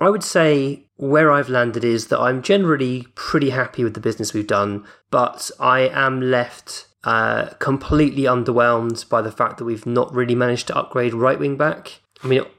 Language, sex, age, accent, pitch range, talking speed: English, male, 20-39, British, 115-150 Hz, 185 wpm